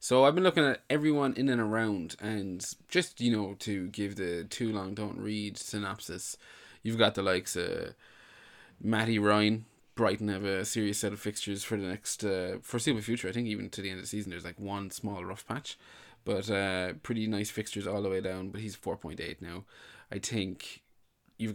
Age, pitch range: 20-39, 95-110 Hz